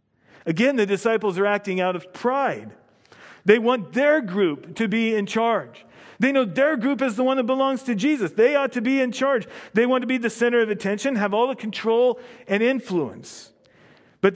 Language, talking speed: English, 200 wpm